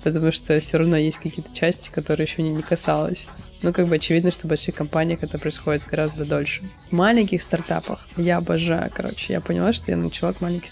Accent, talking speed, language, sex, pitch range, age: native, 205 wpm, Russian, female, 160-185 Hz, 20-39